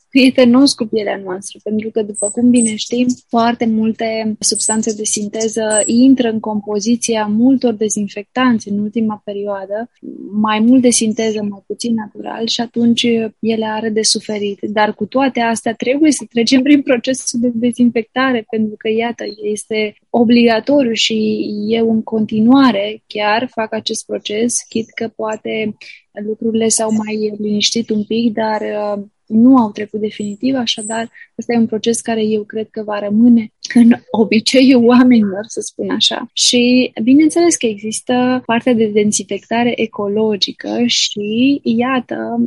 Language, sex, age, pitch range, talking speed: Romanian, female, 20-39, 215-245 Hz, 145 wpm